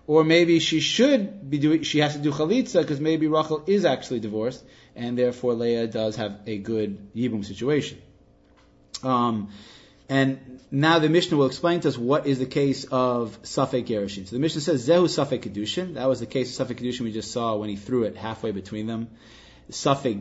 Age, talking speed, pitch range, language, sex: 30-49, 200 wpm, 120-160 Hz, English, male